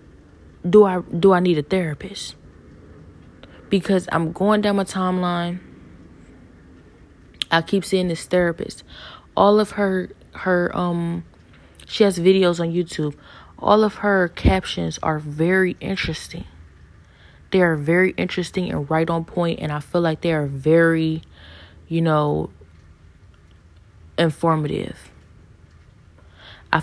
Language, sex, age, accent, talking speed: English, female, 20-39, American, 120 wpm